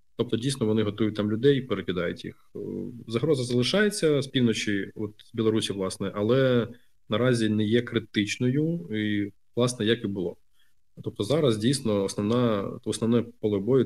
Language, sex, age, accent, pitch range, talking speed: Ukrainian, male, 20-39, native, 100-115 Hz, 145 wpm